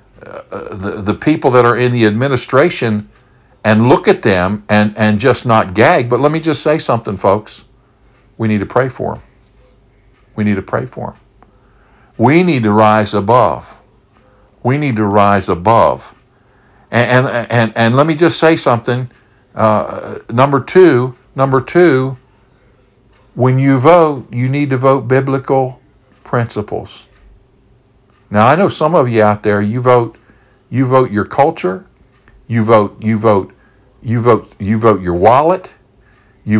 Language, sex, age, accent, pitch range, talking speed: English, male, 50-69, American, 105-130 Hz, 155 wpm